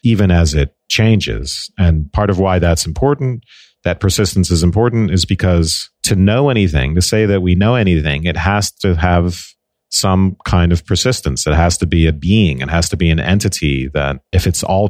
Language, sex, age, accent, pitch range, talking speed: English, male, 40-59, American, 85-100 Hz, 195 wpm